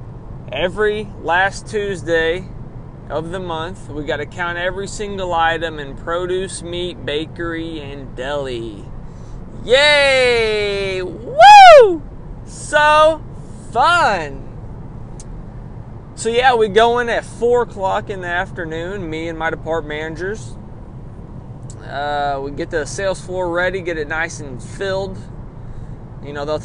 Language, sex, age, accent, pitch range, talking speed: English, male, 20-39, American, 130-180 Hz, 120 wpm